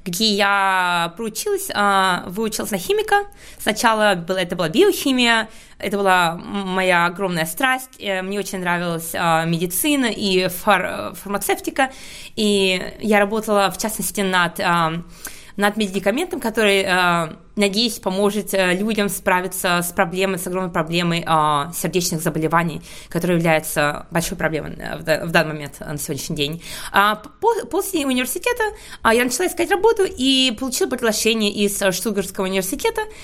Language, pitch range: Russian, 190-250 Hz